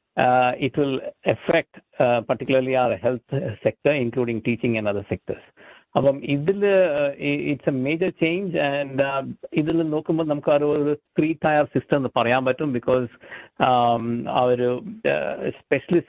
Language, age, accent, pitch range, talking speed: Malayalam, 50-69, native, 120-150 Hz, 140 wpm